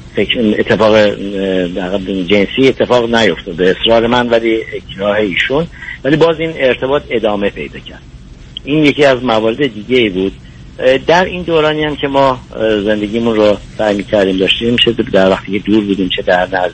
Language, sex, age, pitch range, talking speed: Persian, male, 50-69, 100-125 Hz, 150 wpm